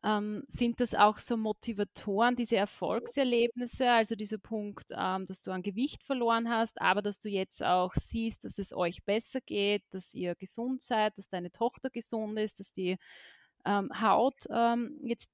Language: German